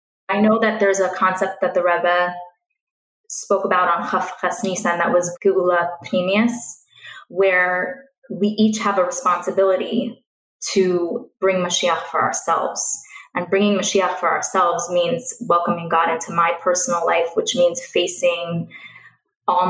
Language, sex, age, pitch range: English, female, 20-39, 175-225 Hz